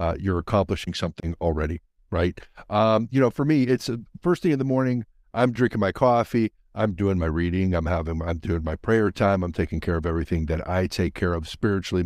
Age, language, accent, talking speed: 60-79, English, American, 220 wpm